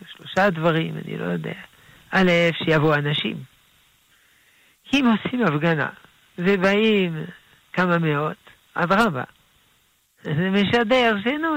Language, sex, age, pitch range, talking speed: Hebrew, male, 60-79, 150-200 Hz, 100 wpm